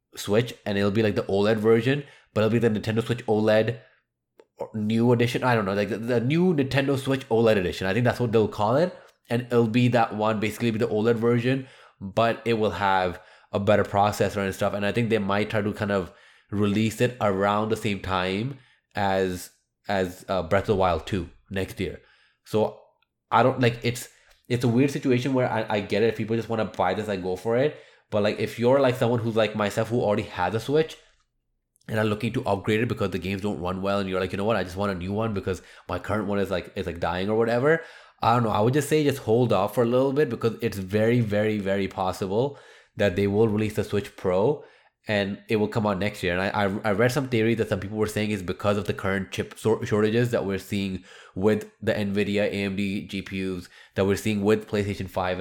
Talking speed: 240 wpm